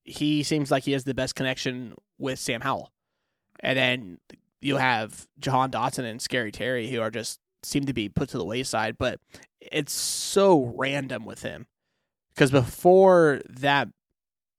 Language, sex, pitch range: English, male, 125-145 Hz